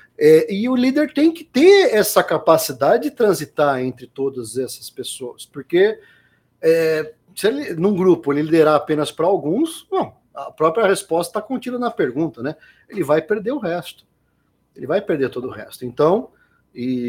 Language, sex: Portuguese, male